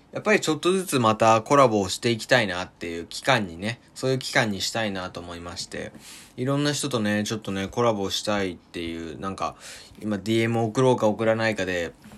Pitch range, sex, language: 95-130 Hz, male, Japanese